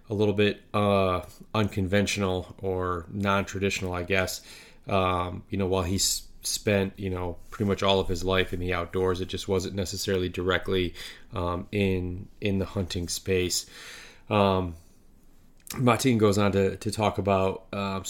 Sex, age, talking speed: male, 20-39, 155 wpm